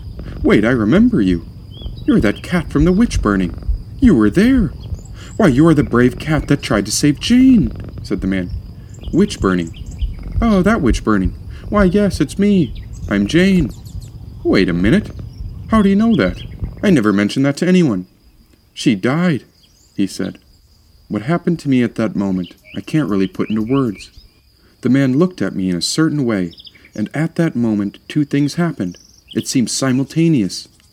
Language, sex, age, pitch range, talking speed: English, male, 40-59, 95-140 Hz, 165 wpm